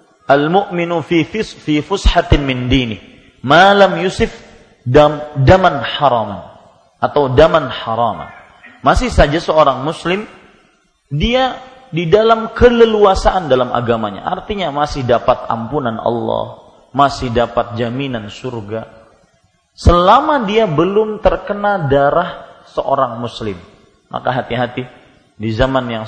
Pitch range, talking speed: 115-170 Hz, 105 wpm